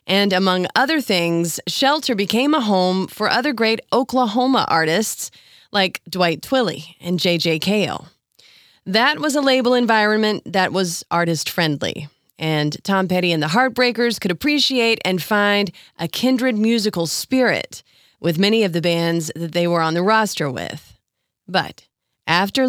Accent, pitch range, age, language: American, 170-235 Hz, 30-49, English